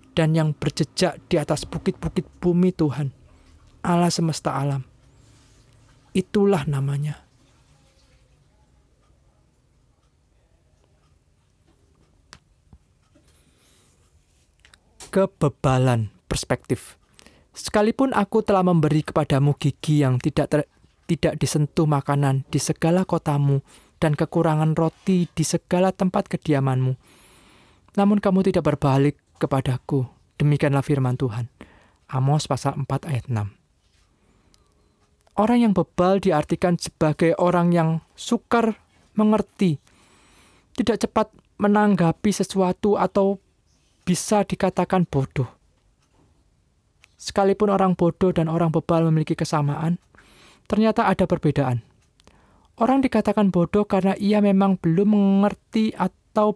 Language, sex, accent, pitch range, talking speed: Indonesian, male, native, 135-190 Hz, 90 wpm